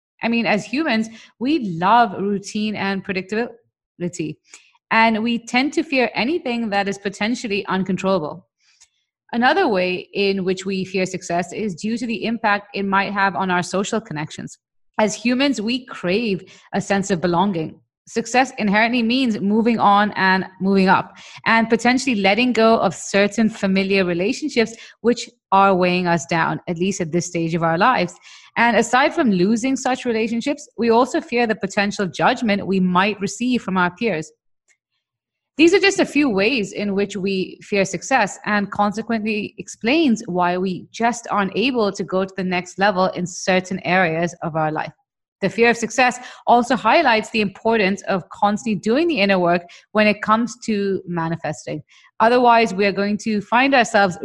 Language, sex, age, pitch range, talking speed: English, female, 30-49, 185-230 Hz, 165 wpm